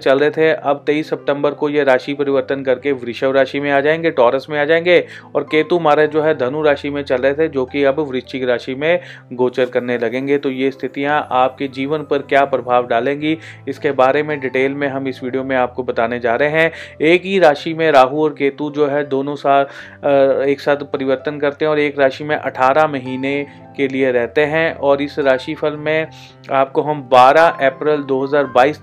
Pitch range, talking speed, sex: 130-150 Hz, 205 wpm, male